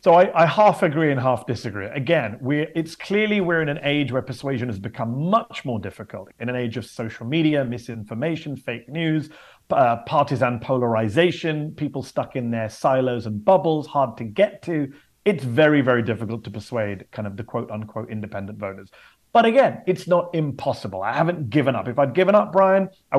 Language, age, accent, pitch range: English, 30-49, British, 120-165 Hz